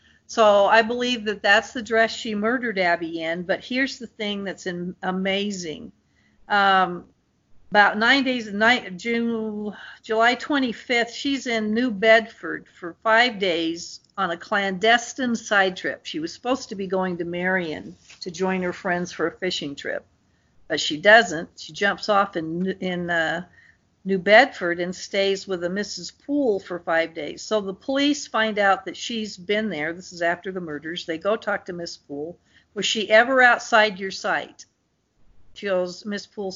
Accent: American